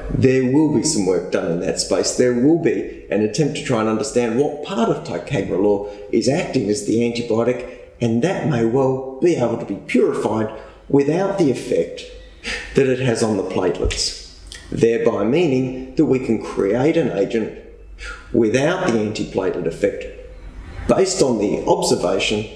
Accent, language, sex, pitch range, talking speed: Australian, English, male, 105-145 Hz, 160 wpm